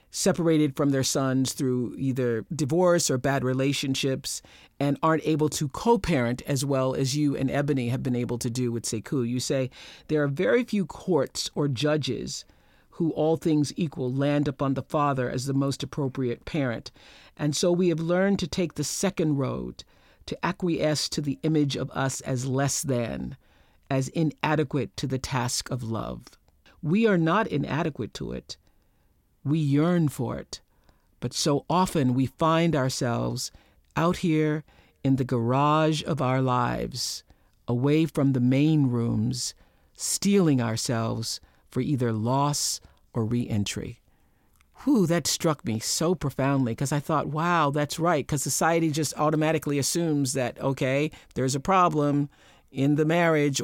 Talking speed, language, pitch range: 155 wpm, English, 130-155 Hz